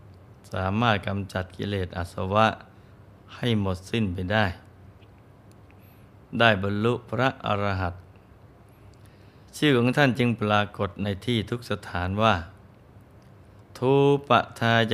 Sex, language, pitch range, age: male, Thai, 100-115 Hz, 20-39